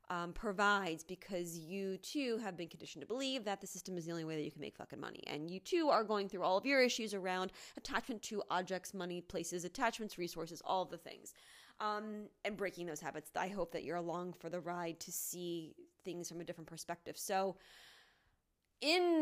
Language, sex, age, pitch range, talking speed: English, female, 20-39, 175-225 Hz, 210 wpm